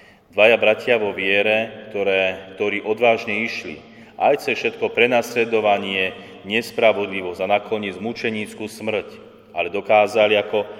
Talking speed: 110 wpm